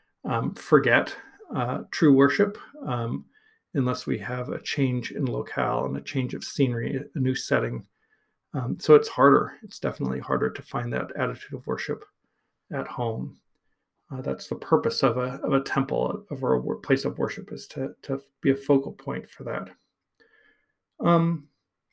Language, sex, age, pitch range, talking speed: English, male, 40-59, 130-155 Hz, 165 wpm